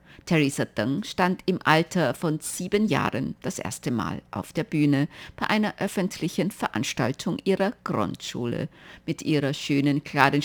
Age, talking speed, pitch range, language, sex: 50-69, 140 wpm, 140-190 Hz, German, female